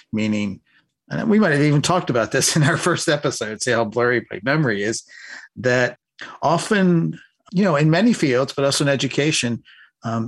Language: English